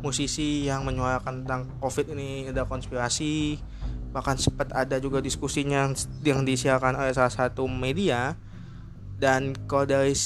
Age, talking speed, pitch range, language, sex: 20-39, 130 wpm, 130-150 Hz, Indonesian, male